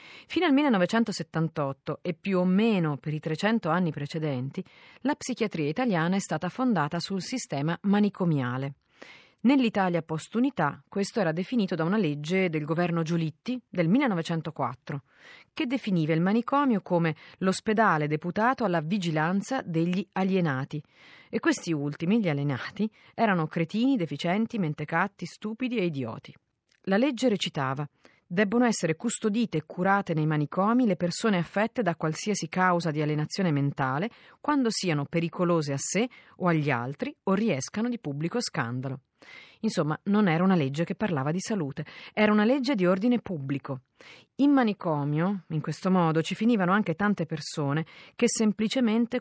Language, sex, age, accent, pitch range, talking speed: Italian, female, 40-59, native, 155-215 Hz, 140 wpm